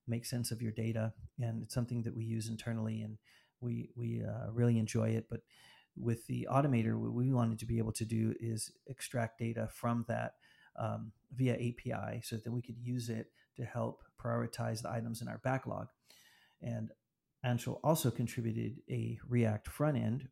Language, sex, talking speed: English, male, 180 wpm